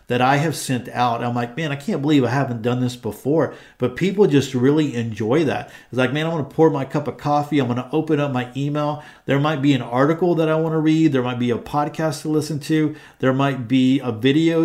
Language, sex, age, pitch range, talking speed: English, male, 50-69, 125-155 Hz, 260 wpm